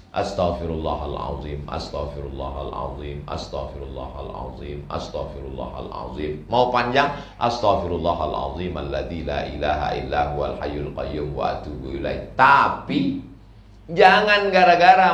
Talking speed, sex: 75 wpm, male